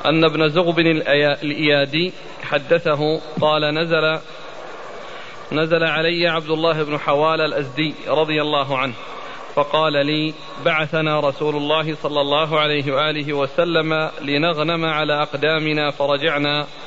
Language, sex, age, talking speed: Arabic, male, 40-59, 110 wpm